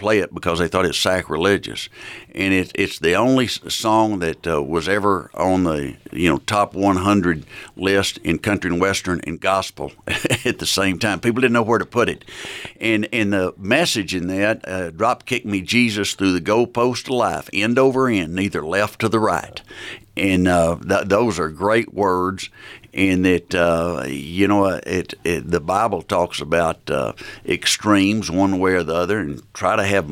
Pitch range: 90-105 Hz